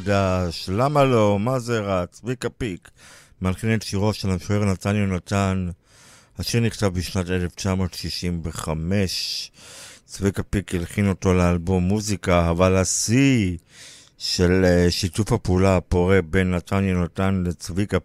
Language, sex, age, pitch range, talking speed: Hebrew, male, 50-69, 90-105 Hz, 125 wpm